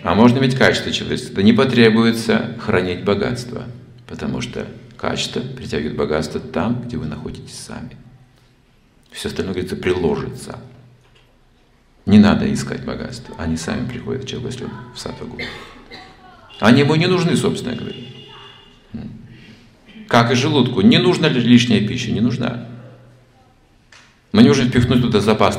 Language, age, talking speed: Russian, 50-69, 135 wpm